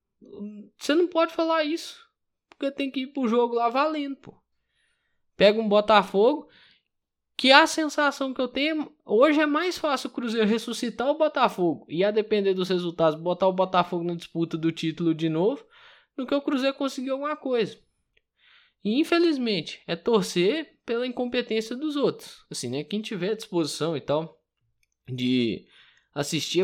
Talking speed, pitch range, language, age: 160 wpm, 165-255 Hz, Portuguese, 10-29